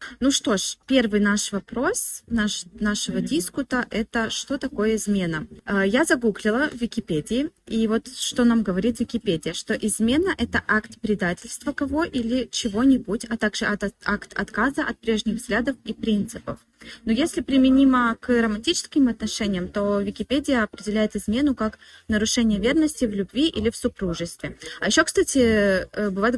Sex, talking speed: female, 145 wpm